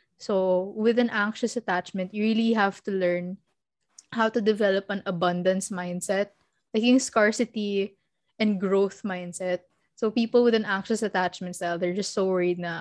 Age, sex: 20-39, female